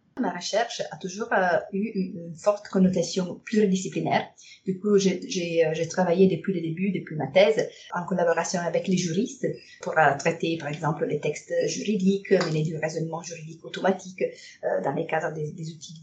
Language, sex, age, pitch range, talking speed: French, female, 30-49, 160-200 Hz, 155 wpm